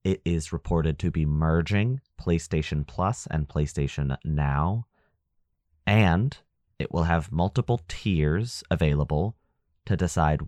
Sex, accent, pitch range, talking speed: male, American, 75-95 Hz, 115 wpm